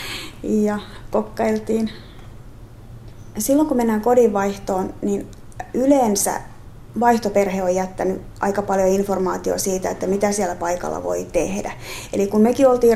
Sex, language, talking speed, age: female, Finnish, 120 wpm, 30-49